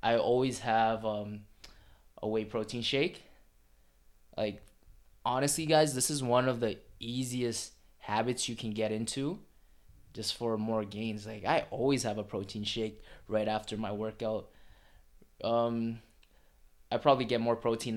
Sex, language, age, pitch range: male, English, 20-39, 105-130 Hz